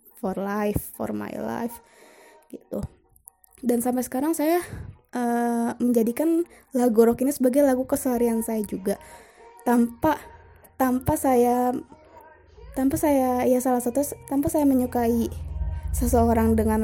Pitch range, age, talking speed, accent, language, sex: 225-265 Hz, 20-39, 120 wpm, Indonesian, English, female